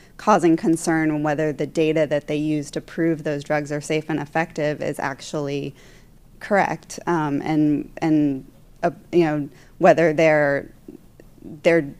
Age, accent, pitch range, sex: 20-39, American, 145-155 Hz, female